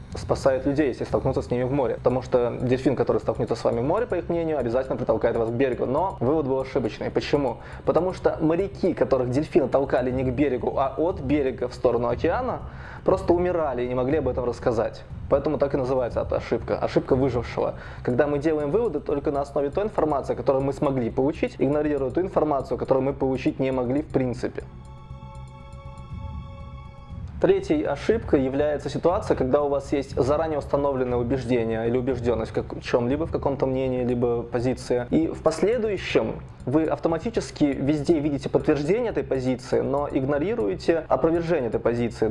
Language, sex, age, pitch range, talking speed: Russian, male, 20-39, 125-145 Hz, 170 wpm